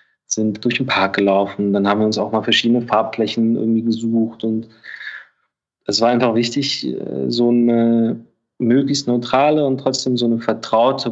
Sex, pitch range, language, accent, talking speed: male, 110-125 Hz, German, German, 155 wpm